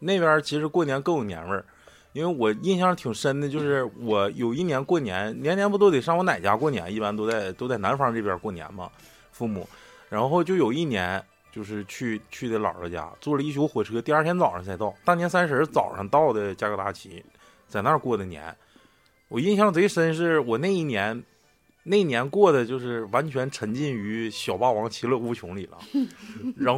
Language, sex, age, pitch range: Chinese, male, 20-39, 115-180 Hz